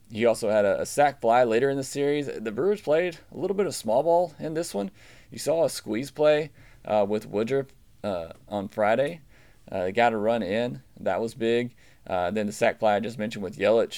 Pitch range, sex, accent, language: 100-120 Hz, male, American, English